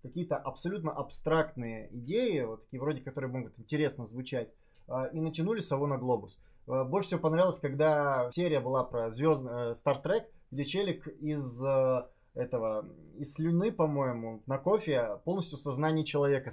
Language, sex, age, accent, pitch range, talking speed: Russian, male, 20-39, native, 130-165 Hz, 155 wpm